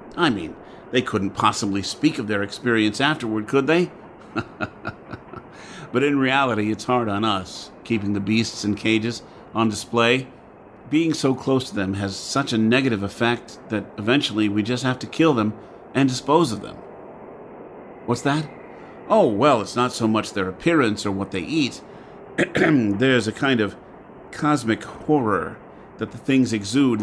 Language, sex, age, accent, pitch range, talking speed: English, male, 50-69, American, 110-135 Hz, 160 wpm